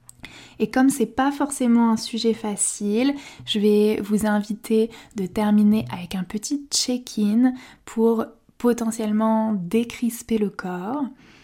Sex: female